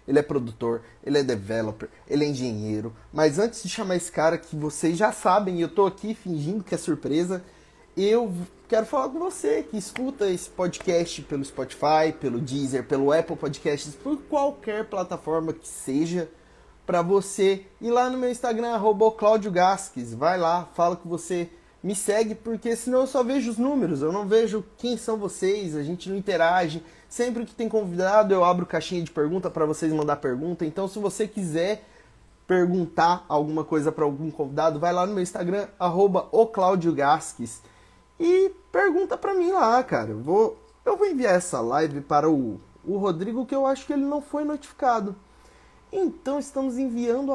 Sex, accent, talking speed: male, Brazilian, 175 wpm